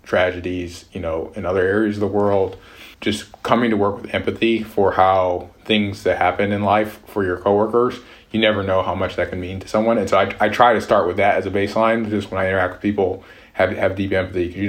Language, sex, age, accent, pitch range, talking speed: English, male, 20-39, American, 95-105 Hz, 240 wpm